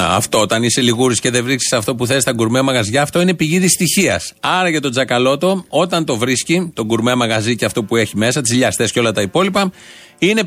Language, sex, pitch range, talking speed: Greek, male, 125-175 Hz, 225 wpm